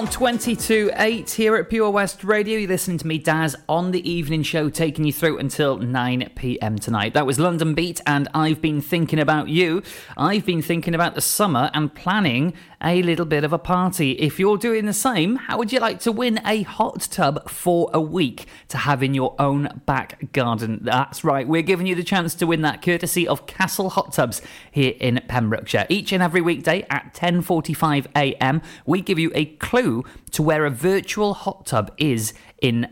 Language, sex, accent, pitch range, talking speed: English, male, British, 125-175 Hz, 195 wpm